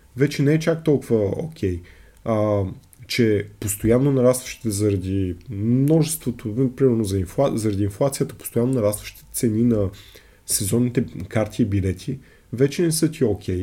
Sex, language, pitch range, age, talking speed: male, Bulgarian, 100-135 Hz, 30-49, 130 wpm